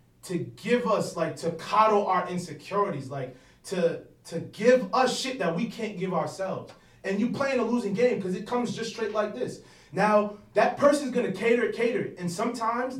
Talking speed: 185 wpm